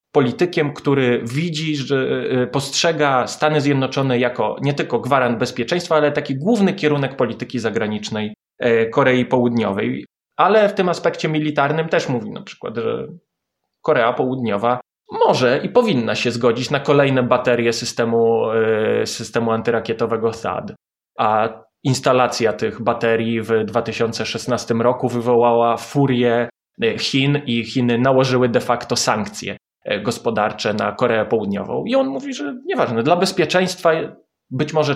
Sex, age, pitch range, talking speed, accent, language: male, 20-39, 120-155 Hz, 125 wpm, native, Polish